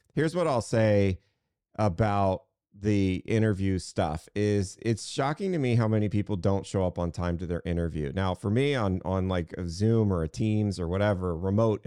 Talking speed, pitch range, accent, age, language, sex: 190 wpm, 95-125 Hz, American, 40-59, English, male